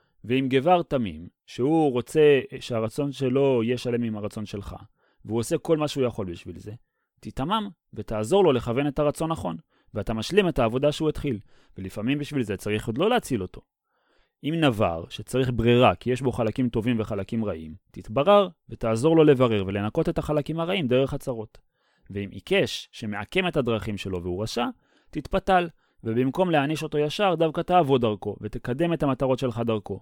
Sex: male